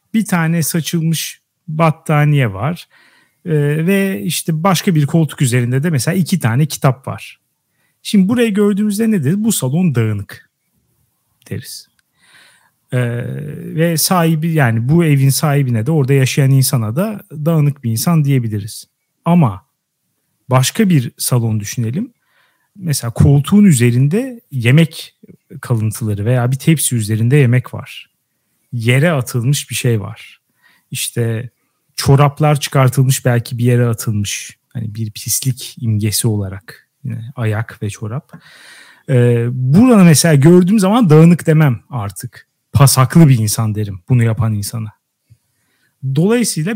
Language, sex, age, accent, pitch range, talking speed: Turkish, male, 40-59, native, 120-165 Hz, 120 wpm